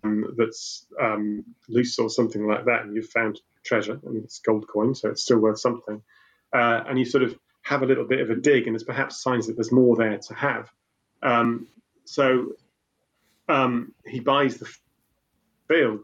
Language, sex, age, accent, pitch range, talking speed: English, male, 30-49, British, 115-135 Hz, 190 wpm